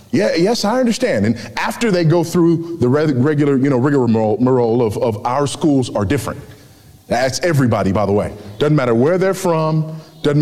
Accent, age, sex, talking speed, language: American, 30-49, male, 175 wpm, English